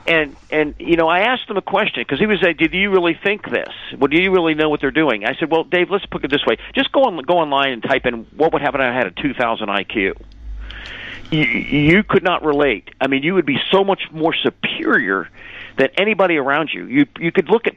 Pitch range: 130-190 Hz